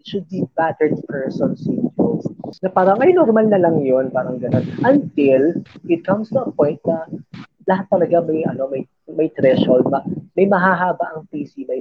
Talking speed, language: 175 wpm, Filipino